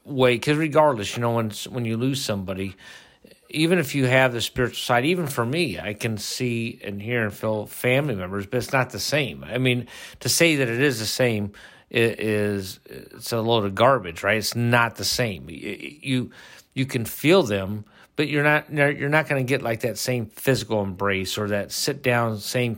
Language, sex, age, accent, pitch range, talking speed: English, male, 50-69, American, 105-130 Hz, 205 wpm